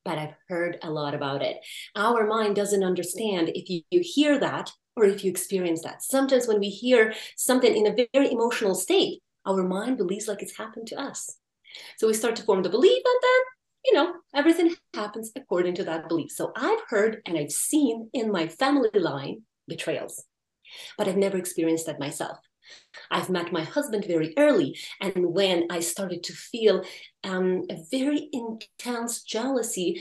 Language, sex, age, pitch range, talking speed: English, female, 30-49, 180-260 Hz, 180 wpm